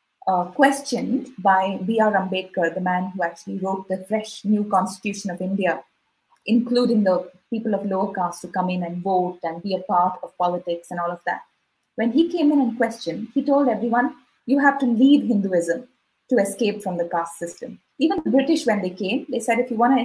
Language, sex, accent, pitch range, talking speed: English, female, Indian, 195-250 Hz, 205 wpm